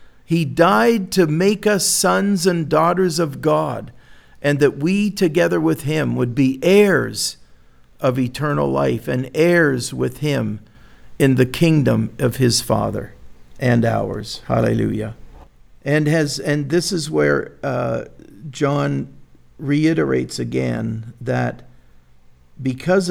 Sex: male